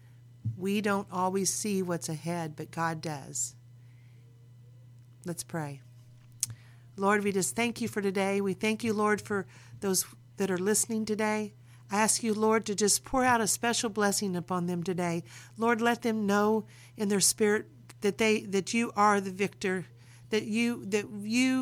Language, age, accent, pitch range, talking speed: English, 50-69, American, 165-215 Hz, 165 wpm